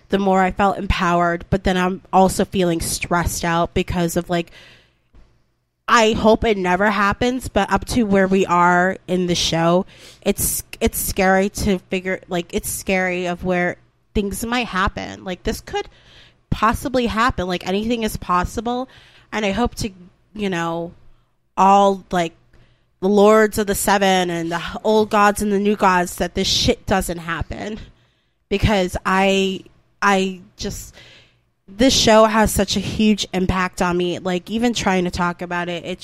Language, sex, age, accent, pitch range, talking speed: English, female, 20-39, American, 175-200 Hz, 165 wpm